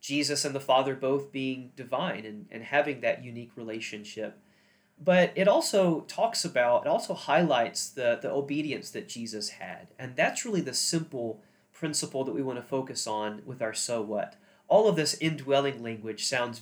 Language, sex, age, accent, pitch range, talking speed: English, male, 30-49, American, 130-175 Hz, 175 wpm